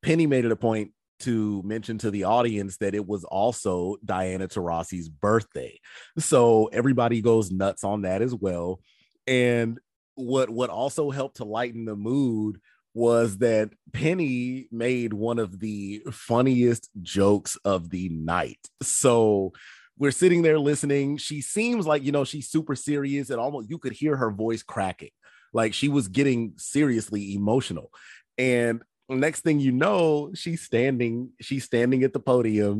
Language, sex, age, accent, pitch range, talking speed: English, male, 30-49, American, 105-135 Hz, 155 wpm